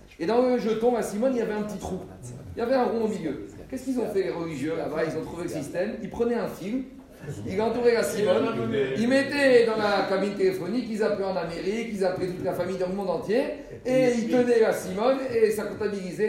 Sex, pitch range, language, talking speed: male, 165-215 Hz, French, 245 wpm